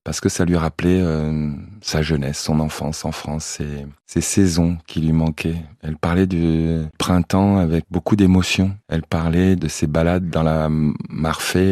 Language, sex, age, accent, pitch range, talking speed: French, male, 20-39, French, 80-95 Hz, 170 wpm